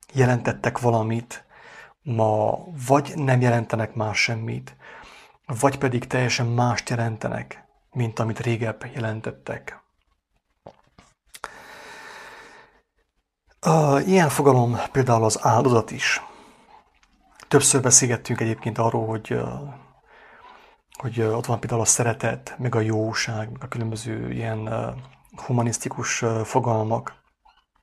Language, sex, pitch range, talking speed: English, male, 110-125 Hz, 95 wpm